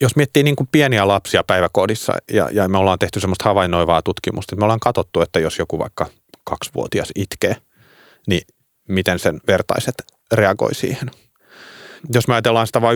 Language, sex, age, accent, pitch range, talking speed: Finnish, male, 30-49, native, 95-125 Hz, 165 wpm